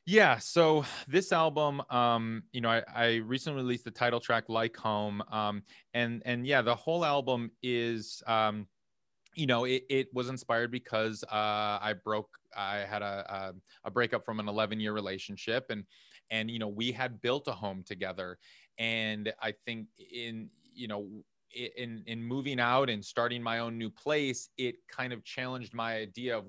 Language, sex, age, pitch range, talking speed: English, male, 30-49, 110-130 Hz, 175 wpm